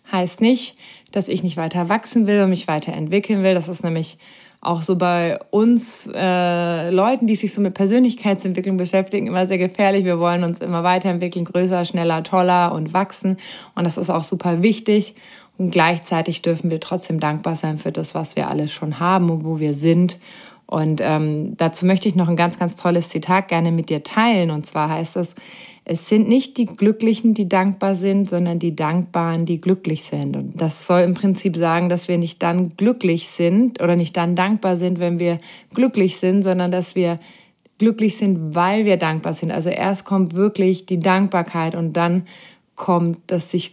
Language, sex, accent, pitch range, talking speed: German, female, German, 170-195 Hz, 190 wpm